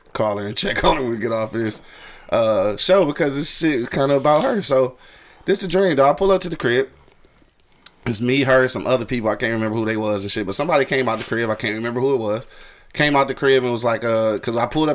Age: 20-39